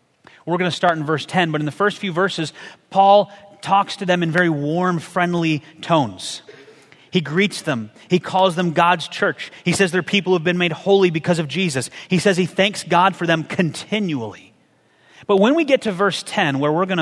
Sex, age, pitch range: male, 30-49, 160-200 Hz